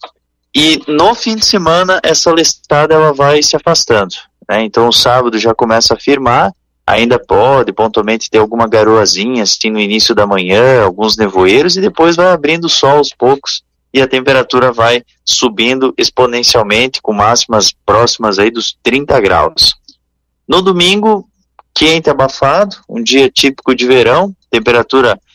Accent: Brazilian